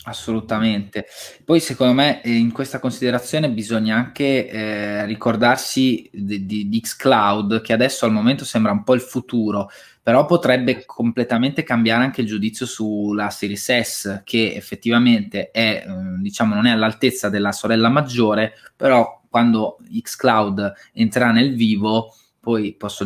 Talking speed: 135 wpm